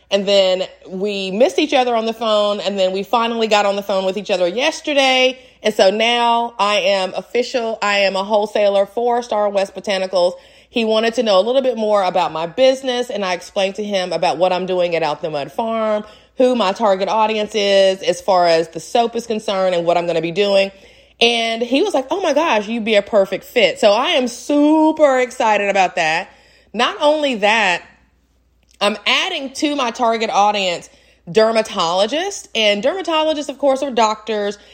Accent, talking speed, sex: American, 195 wpm, female